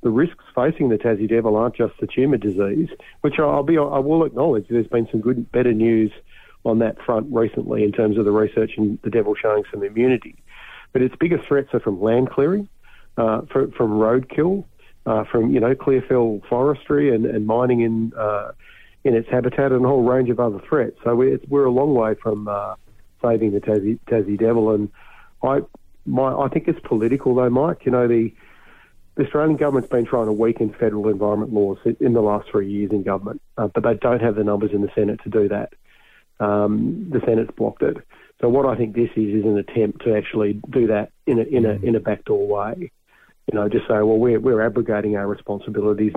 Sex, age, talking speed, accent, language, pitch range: male, 40-59, 215 wpm, Australian, English, 105-135 Hz